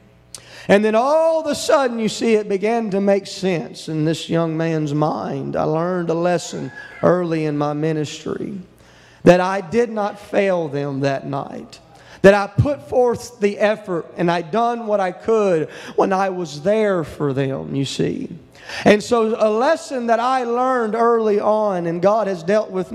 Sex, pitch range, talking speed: male, 175-235 Hz, 180 wpm